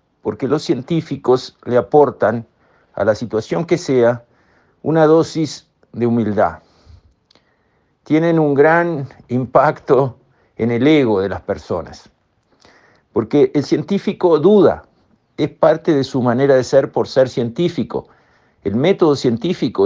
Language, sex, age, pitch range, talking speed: Spanish, male, 50-69, 115-145 Hz, 125 wpm